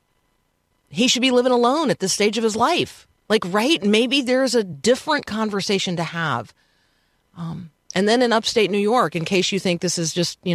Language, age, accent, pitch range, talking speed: English, 40-59, American, 180-245 Hz, 200 wpm